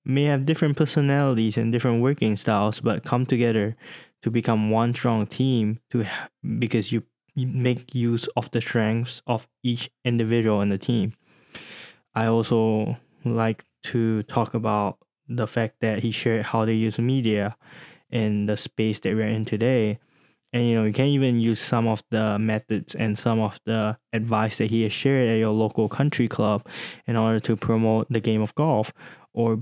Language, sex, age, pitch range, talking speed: English, male, 20-39, 110-125 Hz, 175 wpm